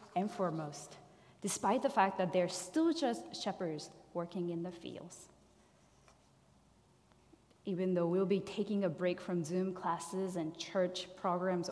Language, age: English, 20-39